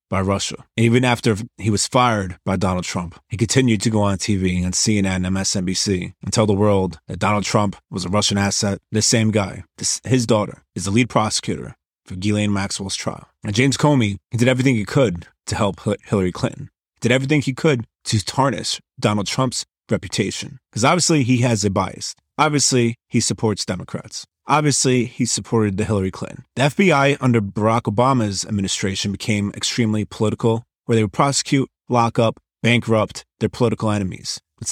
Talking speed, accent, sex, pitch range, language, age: 180 wpm, American, male, 100-120 Hz, English, 30-49